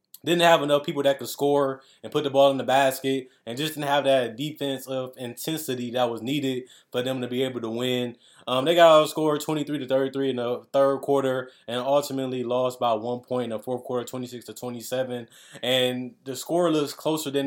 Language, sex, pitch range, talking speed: English, male, 120-135 Hz, 210 wpm